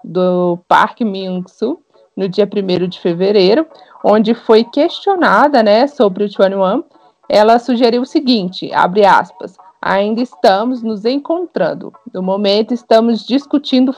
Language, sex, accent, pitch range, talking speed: Portuguese, female, Brazilian, 205-255 Hz, 125 wpm